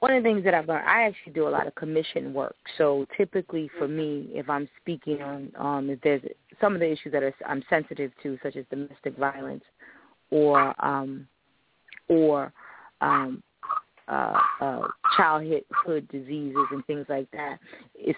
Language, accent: English, American